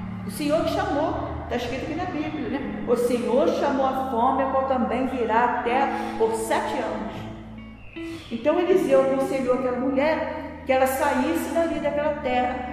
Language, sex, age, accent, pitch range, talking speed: Portuguese, female, 50-69, Brazilian, 230-280 Hz, 165 wpm